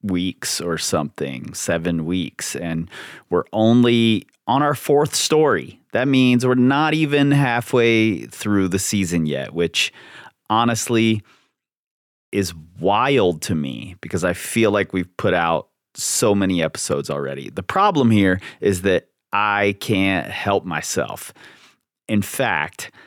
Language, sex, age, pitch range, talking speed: English, male, 30-49, 95-135 Hz, 130 wpm